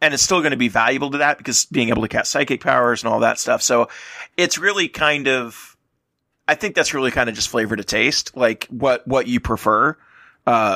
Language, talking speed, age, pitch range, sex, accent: English, 230 wpm, 30-49, 120-150 Hz, male, American